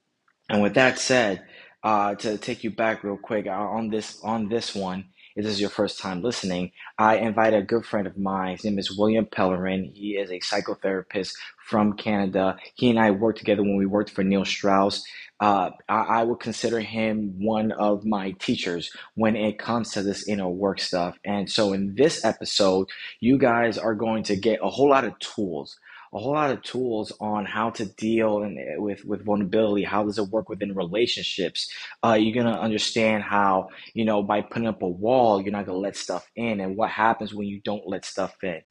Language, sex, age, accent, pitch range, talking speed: English, male, 20-39, American, 100-110 Hz, 205 wpm